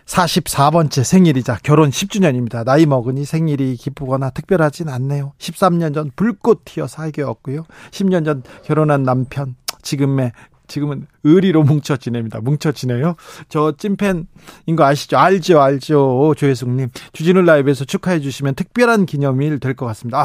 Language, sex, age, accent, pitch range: Korean, male, 40-59, native, 140-175 Hz